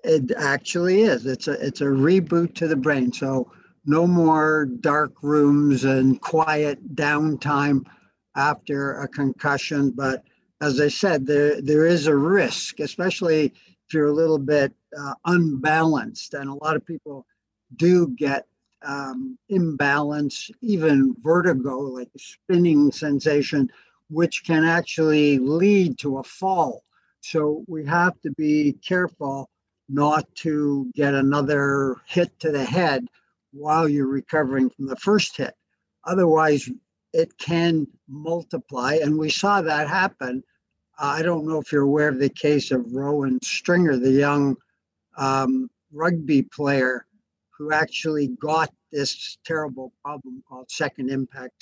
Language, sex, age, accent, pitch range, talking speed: English, male, 60-79, American, 140-165 Hz, 135 wpm